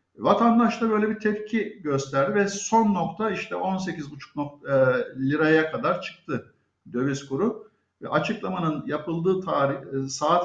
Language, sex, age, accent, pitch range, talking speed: Turkish, male, 50-69, native, 155-215 Hz, 115 wpm